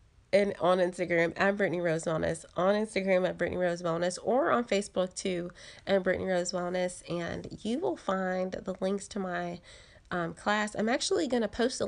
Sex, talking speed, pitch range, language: female, 185 wpm, 180-215 Hz, English